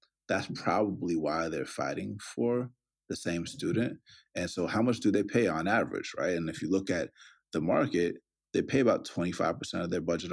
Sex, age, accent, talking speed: male, 30-49, American, 190 wpm